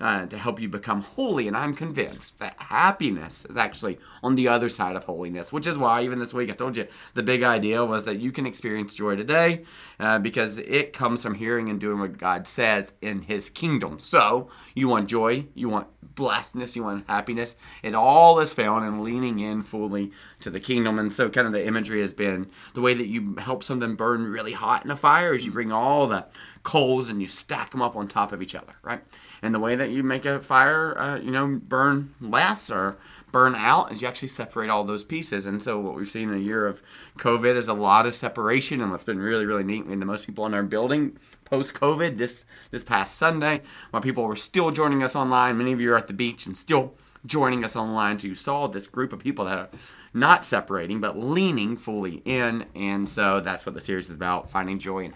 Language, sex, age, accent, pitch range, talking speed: English, male, 30-49, American, 105-130 Hz, 230 wpm